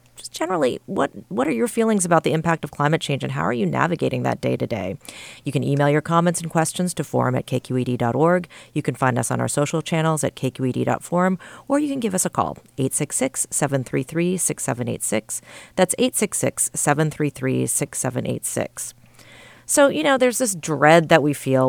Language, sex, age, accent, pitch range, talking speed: English, female, 40-59, American, 130-165 Hz, 170 wpm